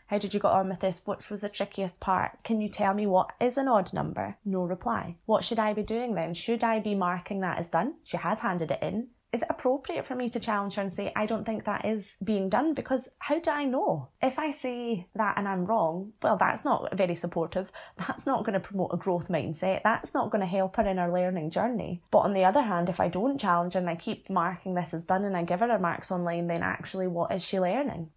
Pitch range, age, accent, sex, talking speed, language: 185-225 Hz, 20-39, British, female, 260 wpm, English